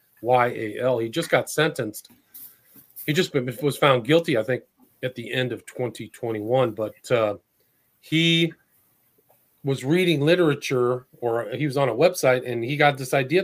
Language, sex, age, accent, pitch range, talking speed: English, male, 40-59, American, 120-150 Hz, 160 wpm